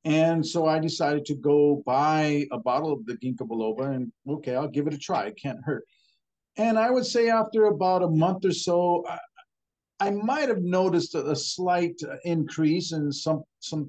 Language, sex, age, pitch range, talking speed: English, male, 50-69, 145-185 Hz, 190 wpm